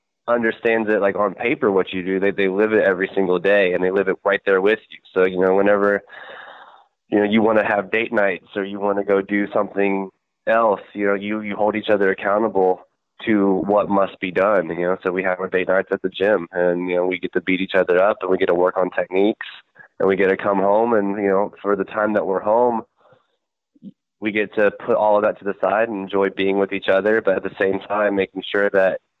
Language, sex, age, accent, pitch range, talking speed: English, male, 20-39, American, 95-100 Hz, 255 wpm